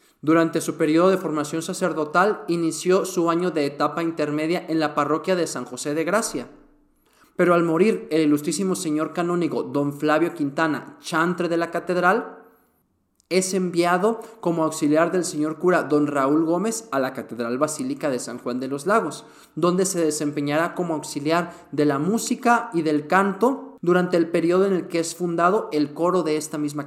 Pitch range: 150-180 Hz